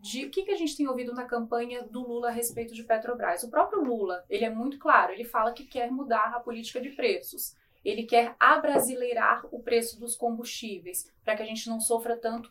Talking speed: 215 wpm